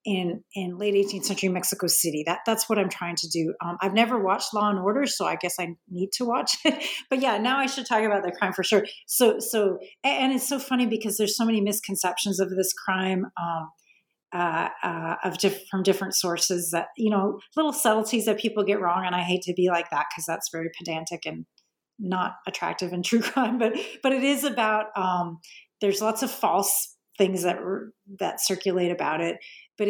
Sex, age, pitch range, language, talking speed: female, 40-59, 180-215 Hz, English, 215 wpm